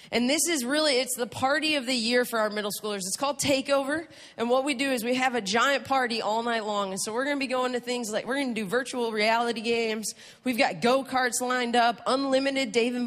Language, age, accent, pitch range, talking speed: English, 30-49, American, 205-265 Hz, 245 wpm